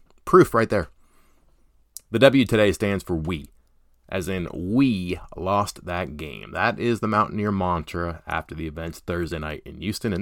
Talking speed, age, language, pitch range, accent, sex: 165 wpm, 30-49, English, 75-105 Hz, American, male